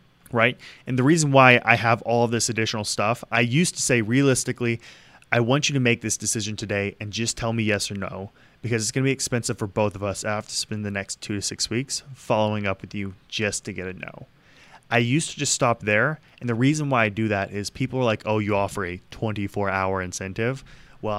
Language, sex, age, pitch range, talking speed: English, male, 20-39, 100-130 Hz, 240 wpm